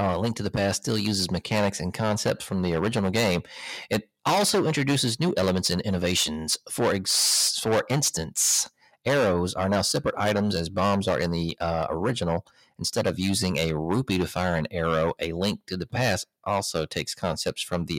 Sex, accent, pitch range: male, American, 85-100 Hz